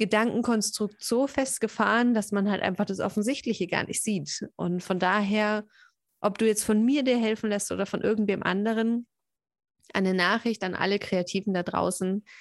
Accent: German